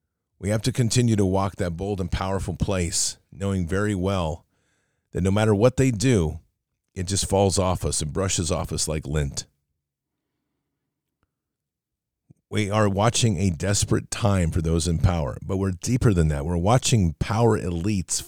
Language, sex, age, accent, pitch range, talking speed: English, male, 40-59, American, 85-105 Hz, 165 wpm